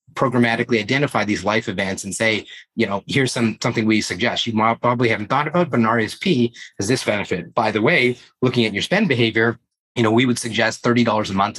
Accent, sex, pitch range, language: American, male, 105-125 Hz, English